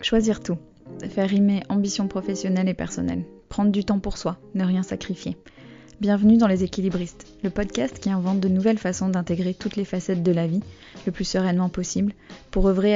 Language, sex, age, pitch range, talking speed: French, female, 20-39, 180-200 Hz, 185 wpm